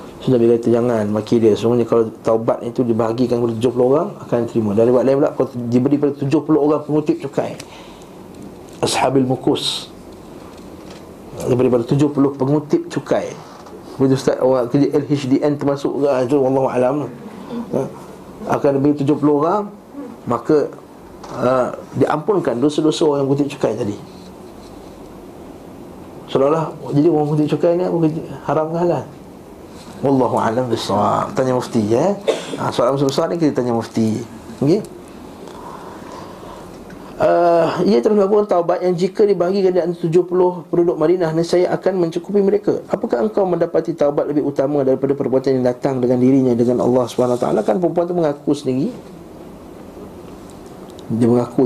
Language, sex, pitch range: Malay, male, 115-165 Hz